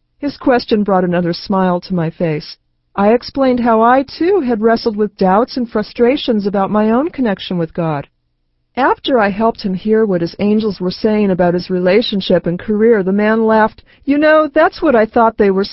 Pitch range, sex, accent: 190-250 Hz, female, American